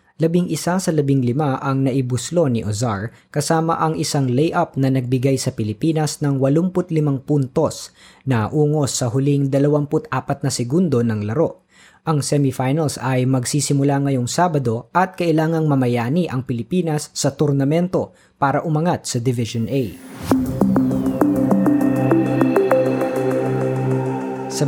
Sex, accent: female, native